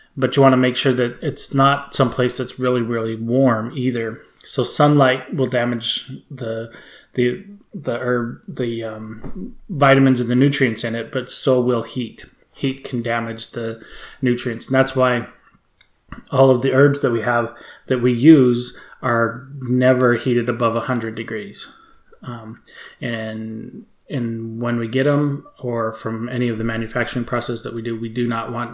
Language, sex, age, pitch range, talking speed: English, male, 20-39, 115-135 Hz, 170 wpm